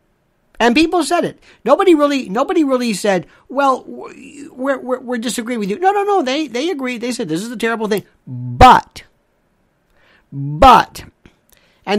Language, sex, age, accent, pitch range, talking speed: English, male, 50-69, American, 175-260 Hz, 160 wpm